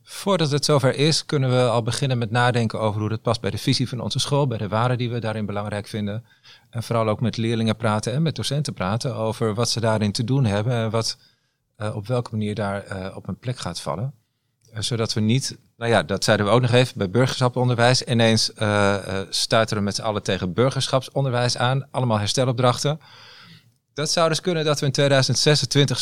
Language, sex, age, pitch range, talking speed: Dutch, male, 40-59, 105-130 Hz, 210 wpm